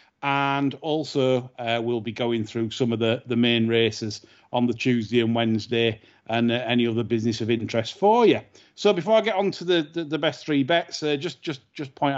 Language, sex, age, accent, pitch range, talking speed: English, male, 40-59, British, 120-165 Hz, 215 wpm